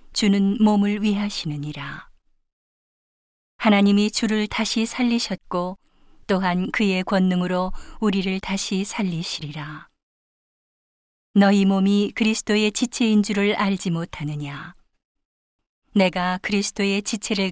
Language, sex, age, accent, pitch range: Korean, female, 40-59, native, 180-205 Hz